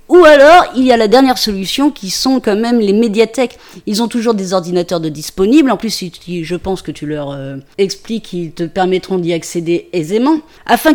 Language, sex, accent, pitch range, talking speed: French, female, French, 210-290 Hz, 195 wpm